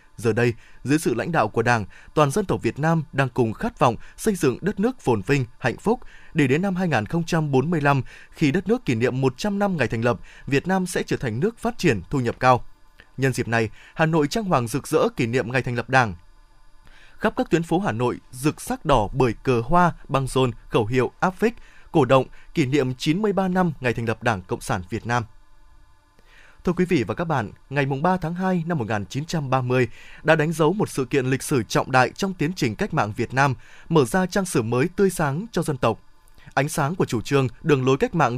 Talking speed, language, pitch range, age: 225 wpm, Vietnamese, 125-165 Hz, 20-39